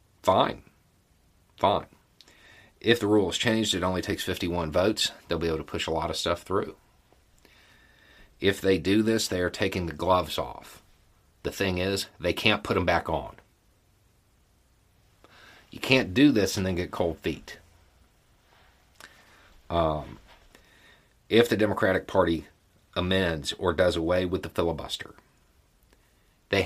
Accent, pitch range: American, 85-100 Hz